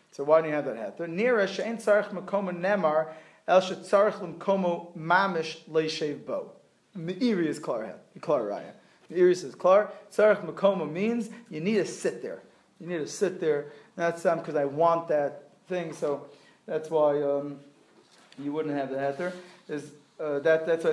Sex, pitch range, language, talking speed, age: male, 155-195 Hz, English, 185 wpm, 30-49